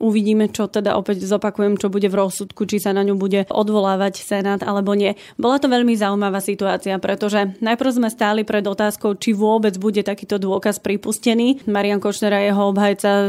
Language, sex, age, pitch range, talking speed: Slovak, female, 20-39, 200-225 Hz, 180 wpm